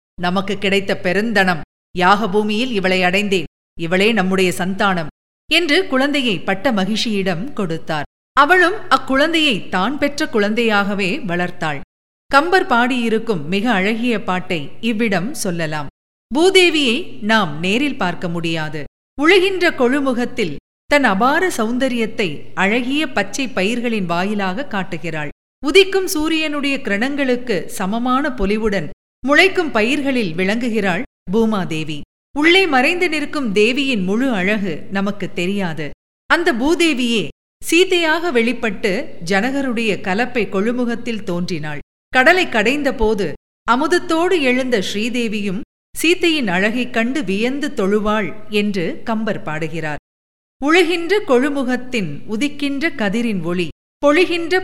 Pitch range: 190-275 Hz